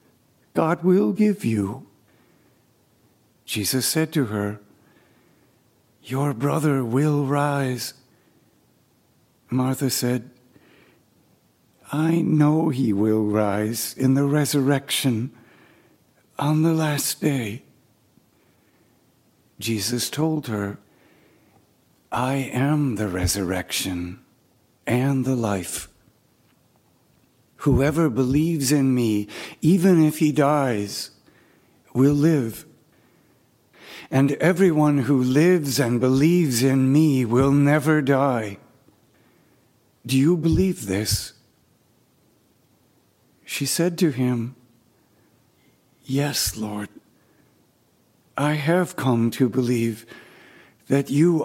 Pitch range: 115-150 Hz